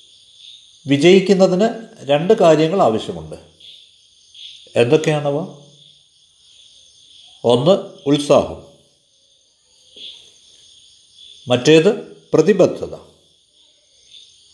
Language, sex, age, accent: Malayalam, male, 50-69, native